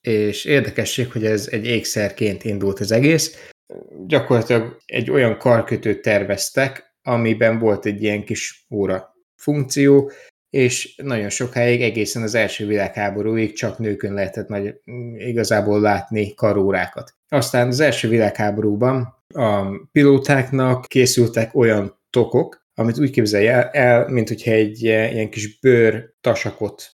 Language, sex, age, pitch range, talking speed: Hungarian, male, 20-39, 105-125 Hz, 120 wpm